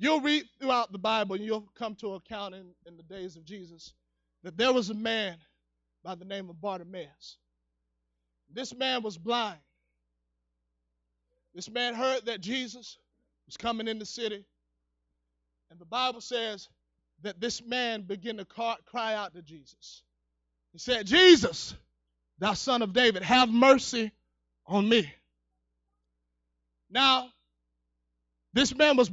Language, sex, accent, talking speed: English, male, American, 140 wpm